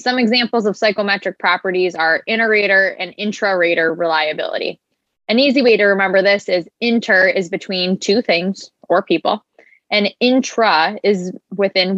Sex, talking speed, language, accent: female, 140 wpm, English, American